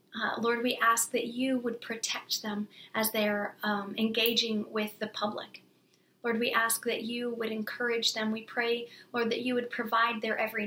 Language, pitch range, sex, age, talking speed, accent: English, 215-240 Hz, female, 40-59, 185 wpm, American